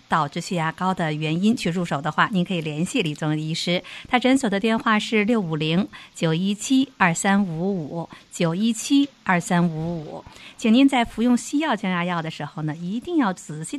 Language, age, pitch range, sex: Chinese, 50-69, 175-230 Hz, female